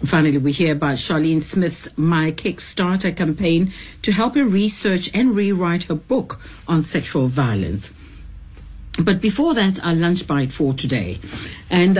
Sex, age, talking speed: female, 60-79, 145 wpm